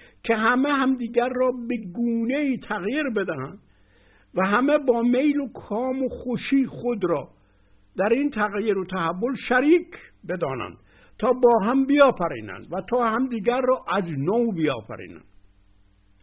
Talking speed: 135 wpm